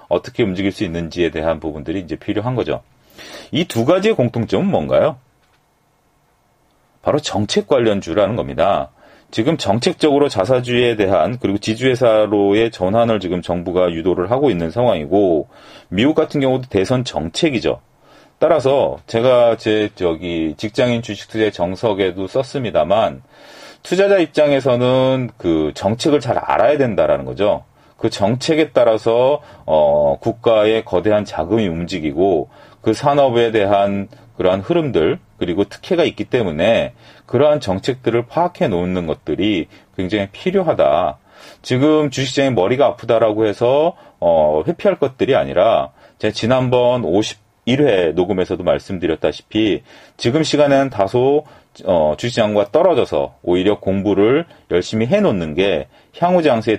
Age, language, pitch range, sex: 40-59, Korean, 100-135 Hz, male